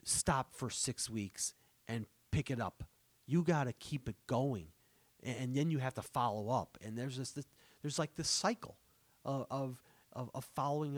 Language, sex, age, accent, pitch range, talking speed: English, male, 40-59, American, 110-145 Hz, 190 wpm